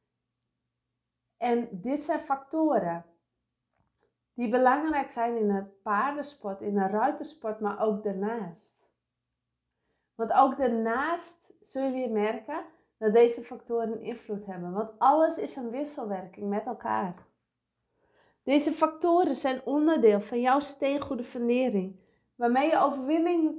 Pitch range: 225-280 Hz